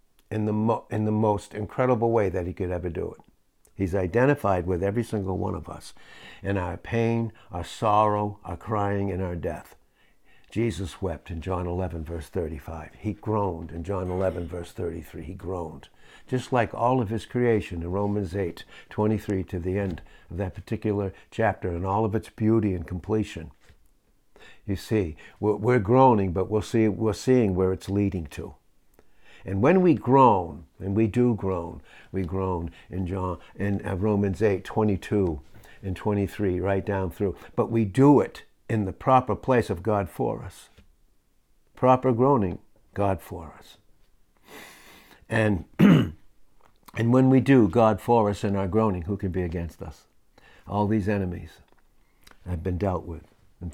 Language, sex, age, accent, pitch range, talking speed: English, male, 60-79, American, 90-110 Hz, 165 wpm